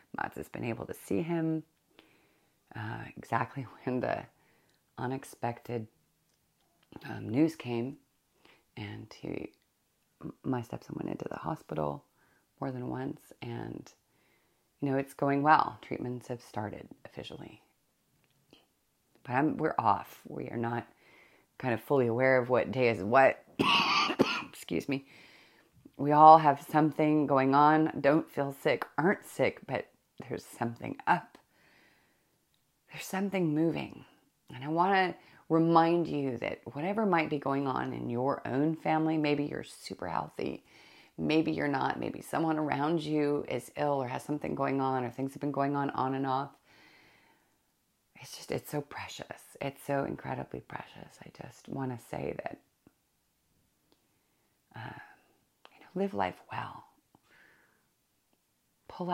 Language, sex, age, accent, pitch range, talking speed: English, female, 30-49, American, 125-155 Hz, 140 wpm